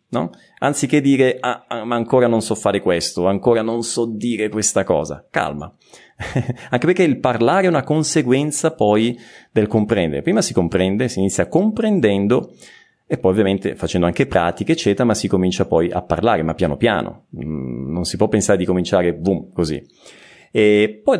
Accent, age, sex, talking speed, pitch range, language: native, 30-49, male, 160 wpm, 105-155 Hz, Italian